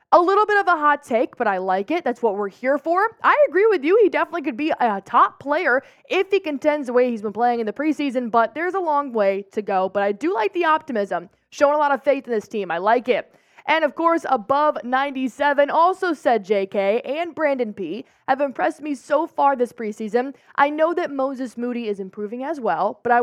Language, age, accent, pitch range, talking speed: English, 20-39, American, 220-300 Hz, 235 wpm